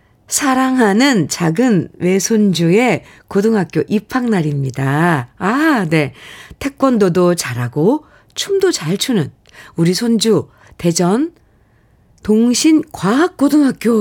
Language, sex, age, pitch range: Korean, female, 50-69, 150-225 Hz